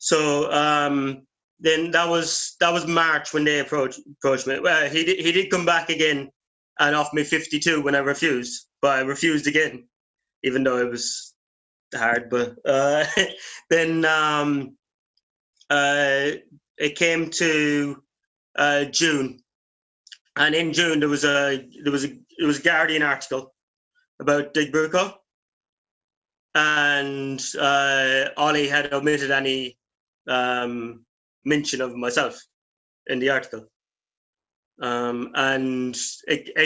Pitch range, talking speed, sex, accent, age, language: 135-165 Hz, 135 wpm, male, British, 30-49, English